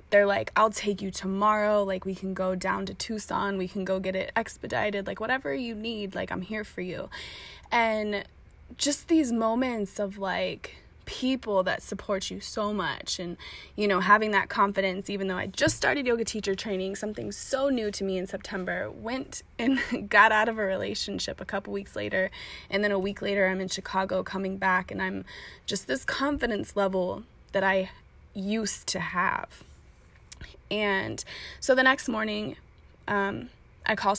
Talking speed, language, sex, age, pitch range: 175 wpm, English, female, 20-39, 190-220 Hz